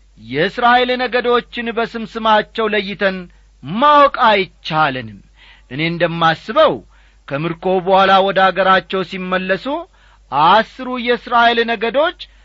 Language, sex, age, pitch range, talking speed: Amharic, male, 50-69, 150-215 Hz, 70 wpm